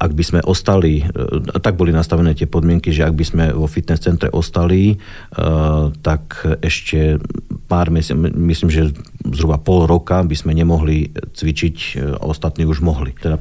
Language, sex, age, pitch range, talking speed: Slovak, male, 50-69, 75-85 Hz, 155 wpm